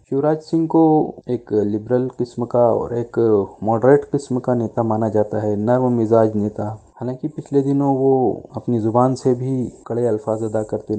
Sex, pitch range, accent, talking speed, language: male, 110-135 Hz, native, 170 wpm, Hindi